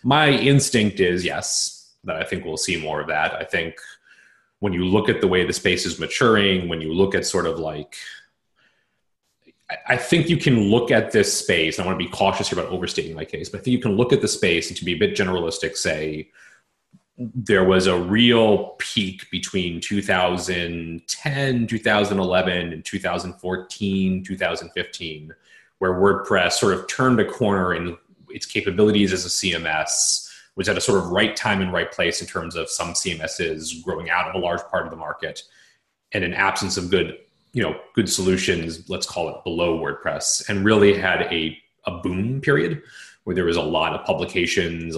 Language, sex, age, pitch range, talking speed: English, male, 30-49, 85-105 Hz, 190 wpm